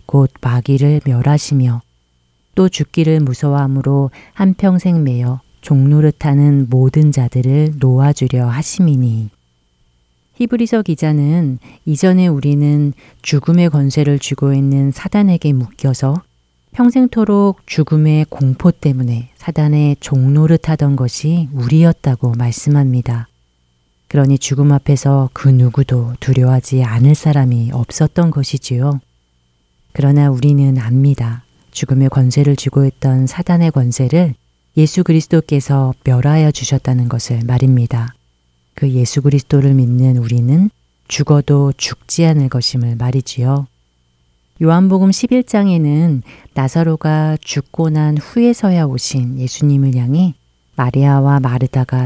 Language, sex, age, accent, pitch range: Korean, female, 40-59, native, 125-150 Hz